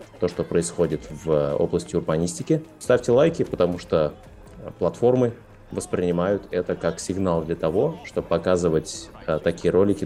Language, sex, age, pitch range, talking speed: Russian, male, 20-39, 80-100 Hz, 125 wpm